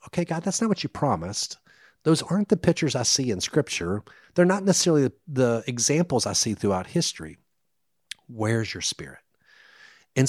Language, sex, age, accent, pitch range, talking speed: English, male, 50-69, American, 100-145 Hz, 170 wpm